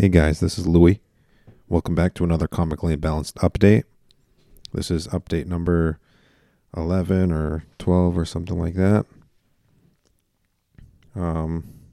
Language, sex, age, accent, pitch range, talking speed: English, male, 40-59, American, 80-90 Hz, 120 wpm